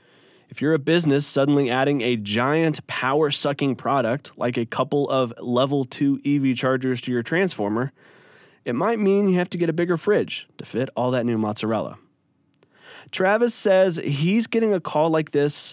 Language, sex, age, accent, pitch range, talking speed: English, male, 20-39, American, 130-175 Hz, 170 wpm